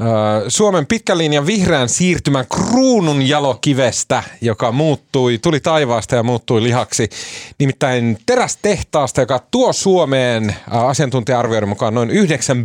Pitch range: 110-150 Hz